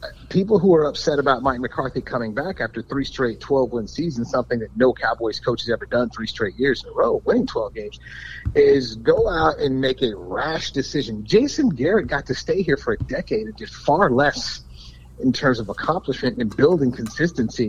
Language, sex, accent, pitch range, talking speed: English, male, American, 130-215 Hz, 200 wpm